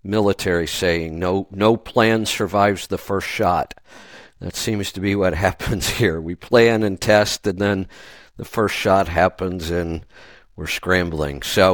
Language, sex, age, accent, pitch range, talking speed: English, male, 50-69, American, 95-115 Hz, 155 wpm